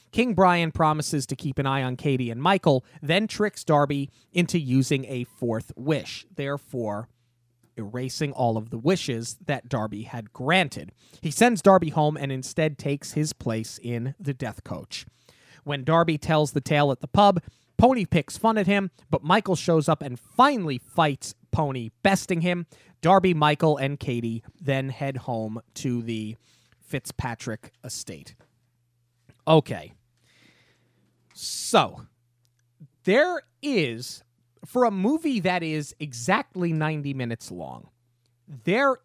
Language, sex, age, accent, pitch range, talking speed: English, male, 30-49, American, 120-175 Hz, 140 wpm